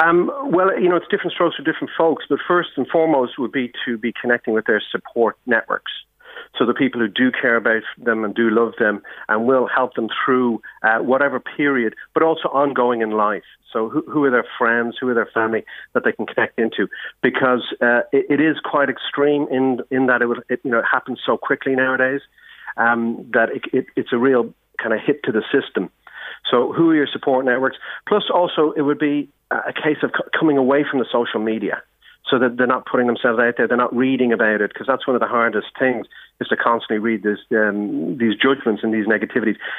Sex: male